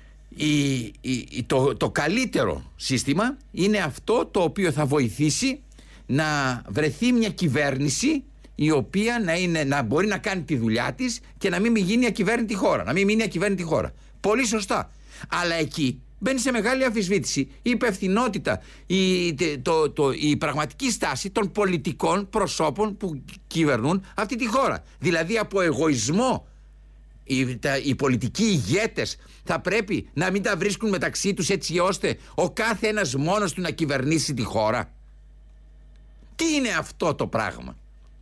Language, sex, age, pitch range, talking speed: Greek, male, 60-79, 140-220 Hz, 150 wpm